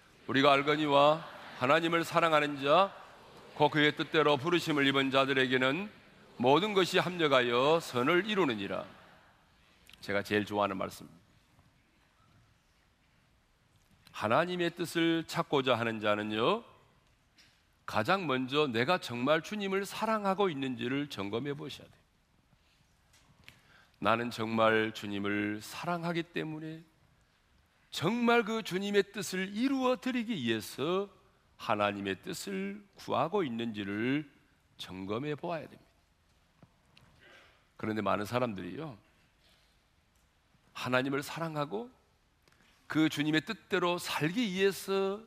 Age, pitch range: 40-59, 125-185 Hz